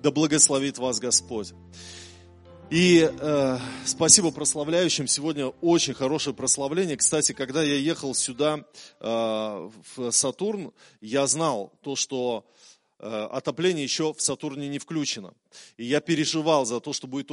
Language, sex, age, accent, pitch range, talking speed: Russian, male, 20-39, native, 125-155 Hz, 130 wpm